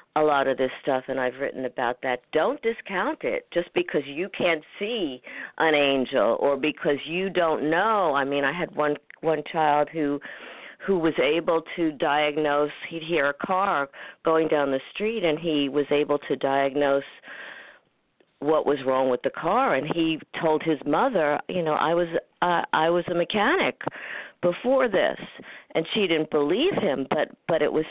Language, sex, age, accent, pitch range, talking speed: English, female, 50-69, American, 140-175 Hz, 180 wpm